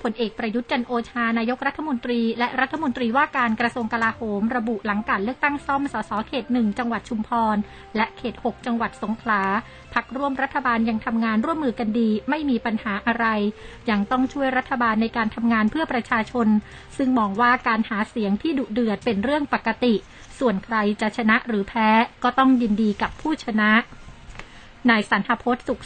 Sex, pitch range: female, 220-255 Hz